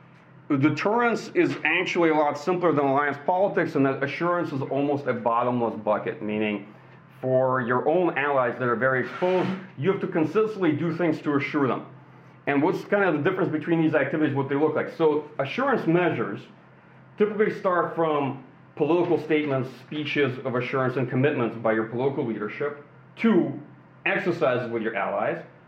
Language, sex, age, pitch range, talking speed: English, male, 40-59, 130-165 Hz, 165 wpm